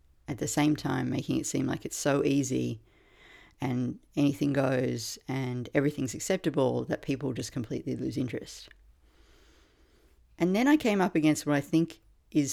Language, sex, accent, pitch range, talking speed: English, female, Australian, 135-170 Hz, 160 wpm